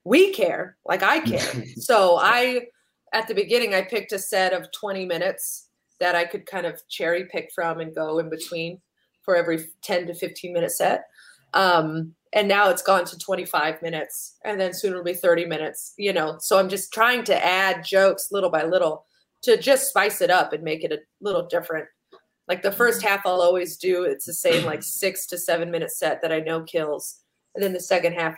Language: English